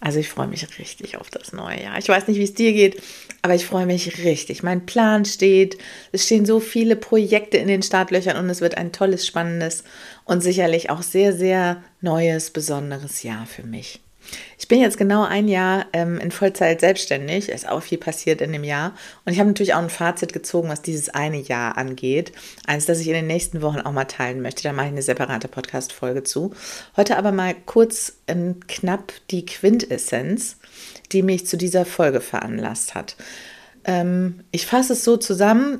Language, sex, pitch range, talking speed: German, female, 155-200 Hz, 200 wpm